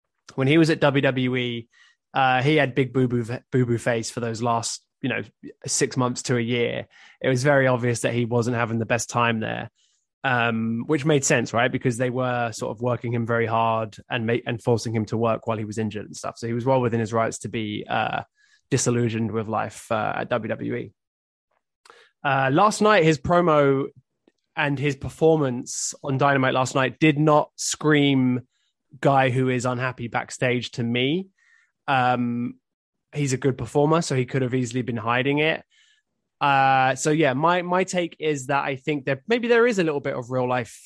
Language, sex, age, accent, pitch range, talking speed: English, male, 20-39, British, 120-140 Hz, 195 wpm